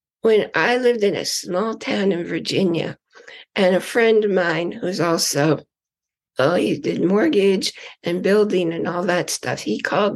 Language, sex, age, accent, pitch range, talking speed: English, female, 60-79, American, 180-255 Hz, 165 wpm